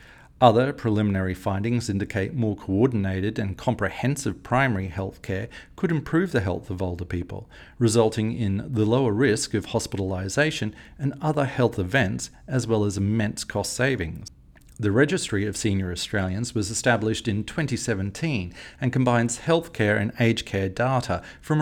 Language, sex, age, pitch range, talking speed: English, male, 40-59, 95-125 Hz, 145 wpm